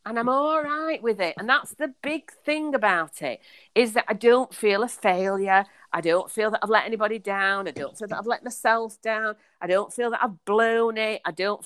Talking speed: 230 wpm